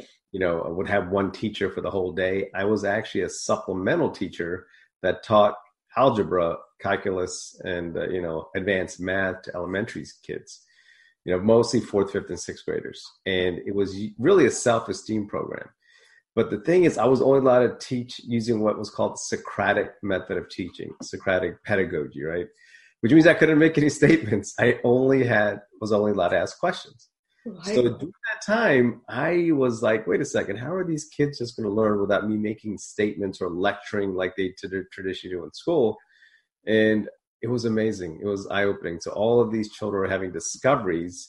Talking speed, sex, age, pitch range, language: 185 wpm, male, 30-49, 100-130 Hz, English